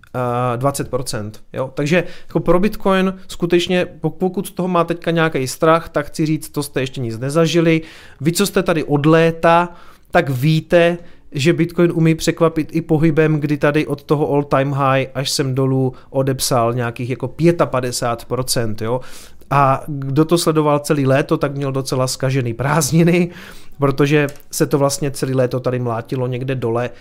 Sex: male